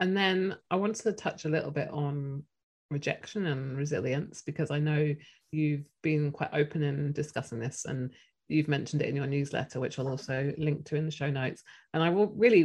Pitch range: 140-160 Hz